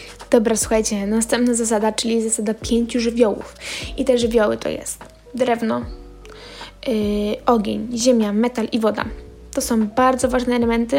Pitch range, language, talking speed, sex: 220-255 Hz, Polish, 135 wpm, female